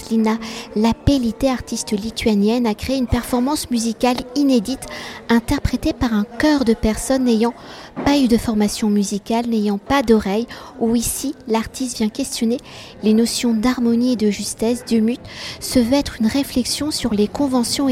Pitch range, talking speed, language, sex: 220-255 Hz, 155 wpm, French, female